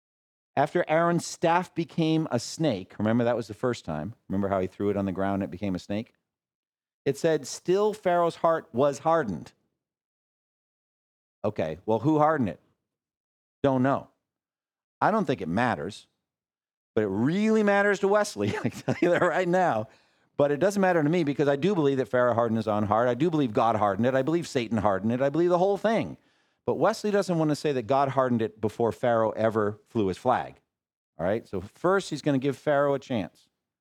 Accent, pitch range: American, 110-165 Hz